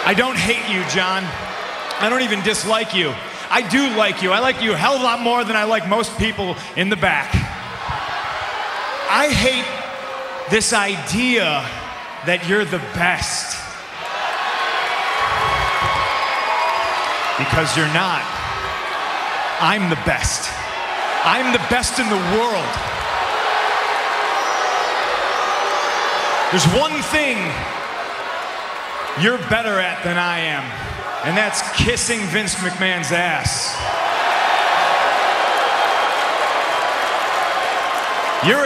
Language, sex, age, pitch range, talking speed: English, male, 30-49, 180-230 Hz, 105 wpm